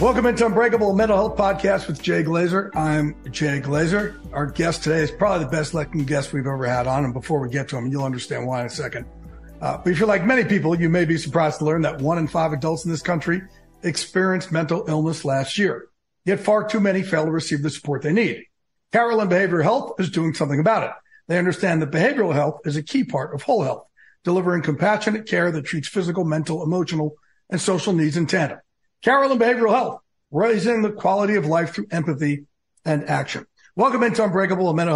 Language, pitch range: English, 155-195 Hz